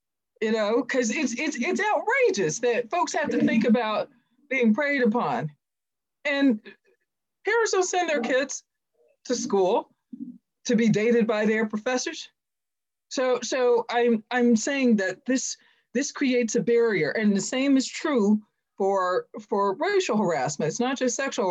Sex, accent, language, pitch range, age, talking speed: female, American, English, 210-275 Hz, 40-59, 150 wpm